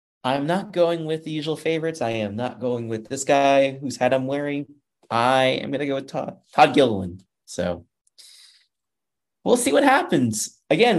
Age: 30-49